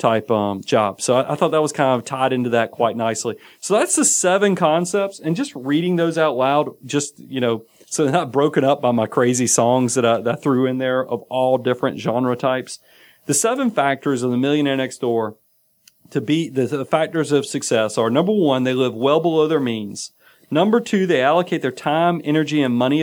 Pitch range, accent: 125-165 Hz, American